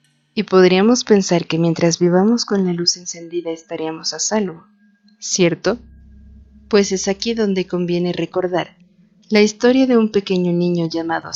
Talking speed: 145 wpm